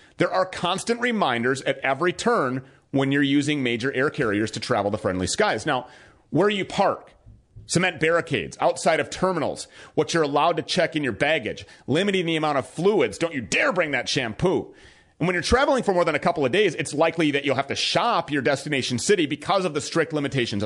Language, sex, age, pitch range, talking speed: English, male, 30-49, 135-175 Hz, 210 wpm